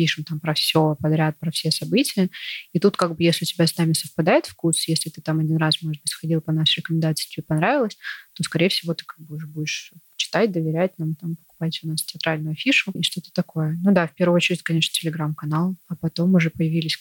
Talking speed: 220 wpm